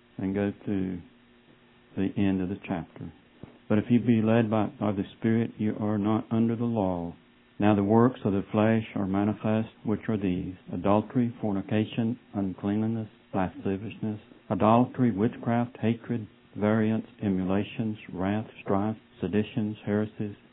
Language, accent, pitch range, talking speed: English, American, 100-115 Hz, 135 wpm